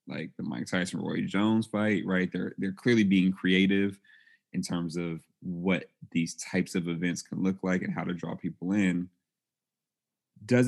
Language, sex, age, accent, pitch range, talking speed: English, male, 30-49, American, 85-95 Hz, 175 wpm